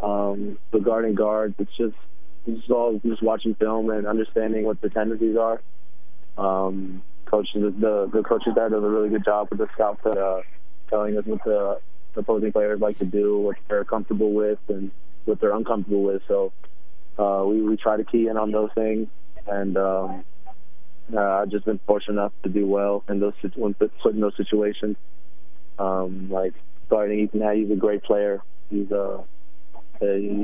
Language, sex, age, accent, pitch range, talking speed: English, male, 20-39, American, 95-110 Hz, 185 wpm